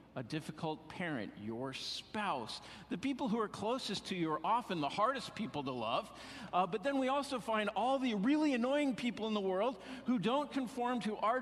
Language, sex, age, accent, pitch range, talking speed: English, male, 50-69, American, 160-230 Hz, 200 wpm